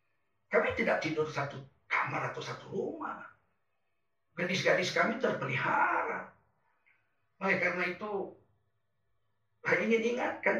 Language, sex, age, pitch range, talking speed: Indonesian, male, 50-69, 150-225 Hz, 100 wpm